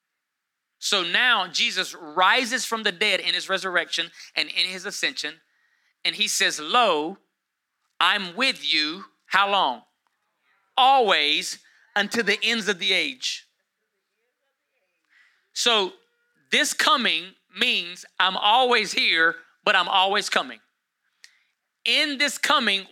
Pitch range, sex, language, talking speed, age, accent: 180-235 Hz, male, English, 115 wpm, 30-49, American